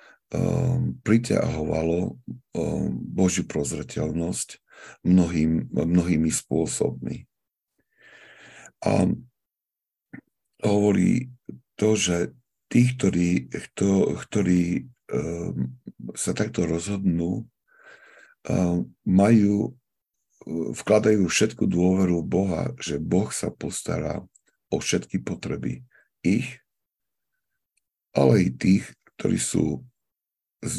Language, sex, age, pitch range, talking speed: Slovak, male, 60-79, 85-120 Hz, 70 wpm